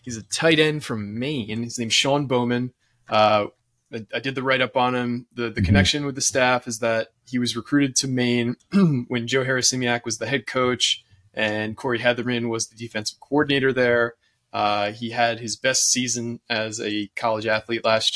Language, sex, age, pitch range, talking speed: English, male, 20-39, 110-125 Hz, 190 wpm